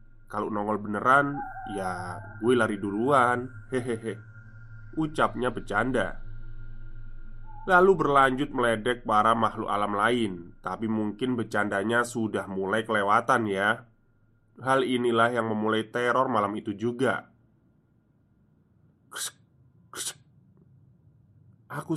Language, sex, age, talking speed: Indonesian, male, 20-39, 90 wpm